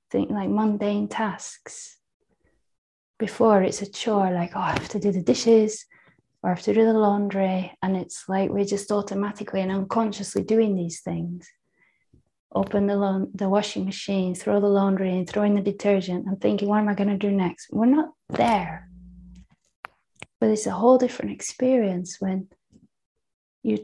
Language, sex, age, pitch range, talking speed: English, female, 30-49, 190-230 Hz, 170 wpm